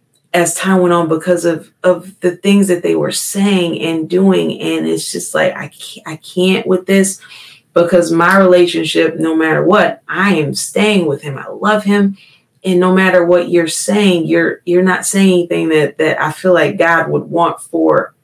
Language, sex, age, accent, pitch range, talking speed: English, female, 30-49, American, 160-200 Hz, 195 wpm